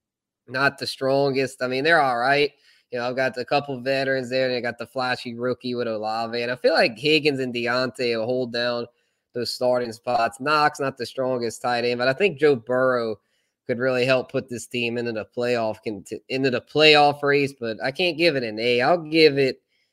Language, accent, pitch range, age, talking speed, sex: English, American, 115-135 Hz, 20-39, 215 wpm, male